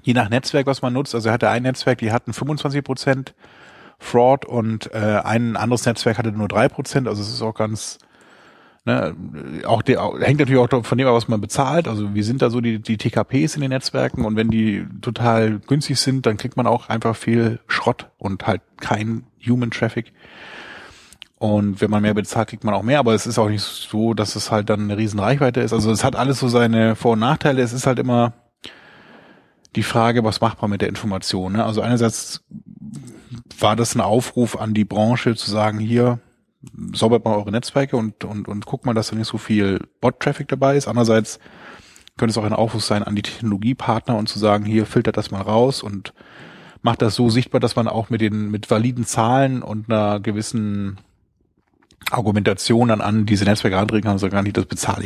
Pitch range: 105-125 Hz